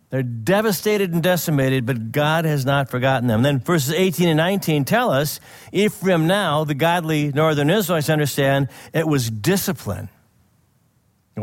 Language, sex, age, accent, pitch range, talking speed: English, male, 50-69, American, 120-165 Hz, 145 wpm